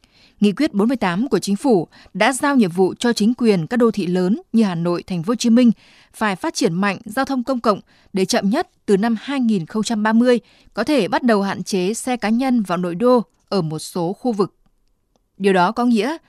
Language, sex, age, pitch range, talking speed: Vietnamese, female, 20-39, 190-240 Hz, 220 wpm